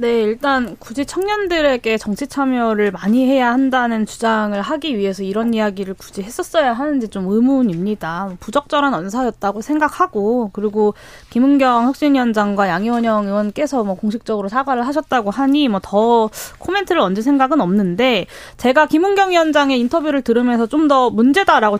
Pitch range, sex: 210-290 Hz, female